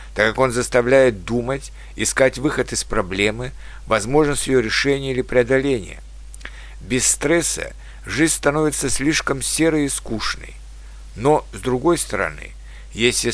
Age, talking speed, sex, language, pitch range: 60-79, 120 wpm, male, Russian, 100-140 Hz